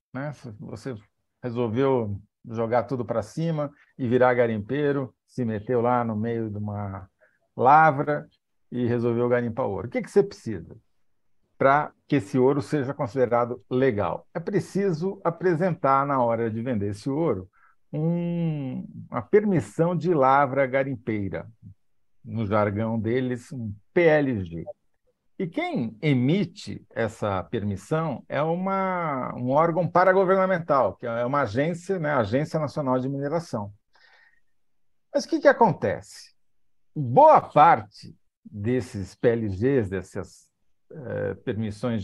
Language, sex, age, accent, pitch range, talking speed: Portuguese, male, 50-69, Brazilian, 110-160 Hz, 120 wpm